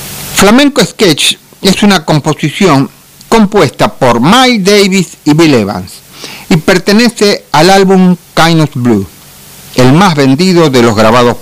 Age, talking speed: 50-69, 125 wpm